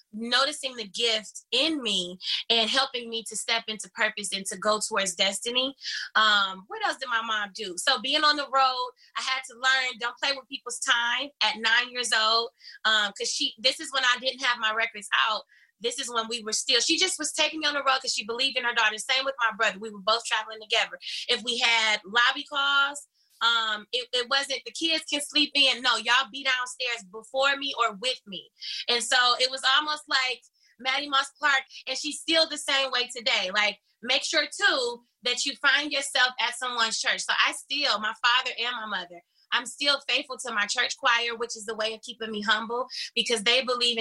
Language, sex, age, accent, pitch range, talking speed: English, female, 20-39, American, 220-270 Hz, 215 wpm